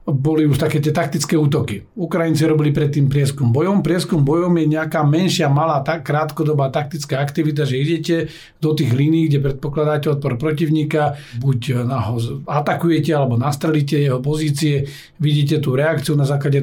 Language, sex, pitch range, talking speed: Slovak, male, 135-160 Hz, 150 wpm